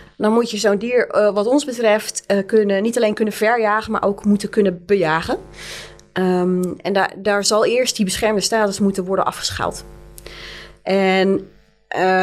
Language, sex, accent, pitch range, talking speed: Dutch, female, Dutch, 195-235 Hz, 160 wpm